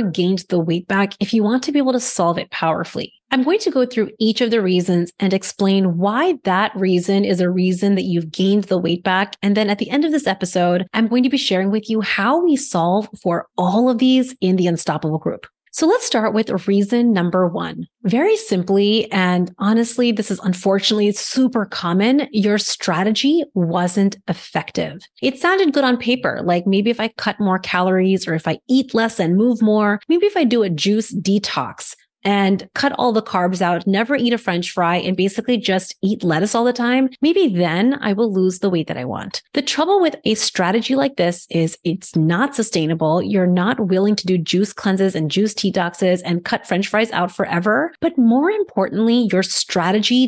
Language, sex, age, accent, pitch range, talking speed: English, female, 30-49, American, 180-235 Hz, 205 wpm